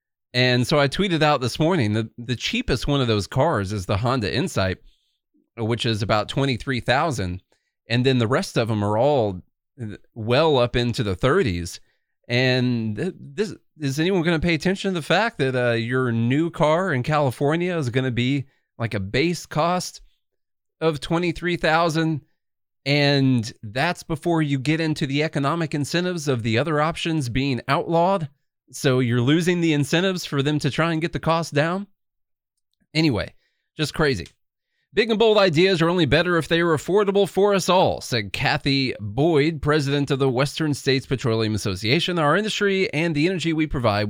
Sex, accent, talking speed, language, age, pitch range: male, American, 170 wpm, English, 30-49, 120-165 Hz